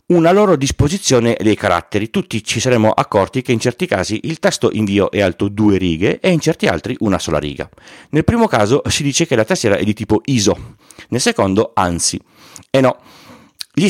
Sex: male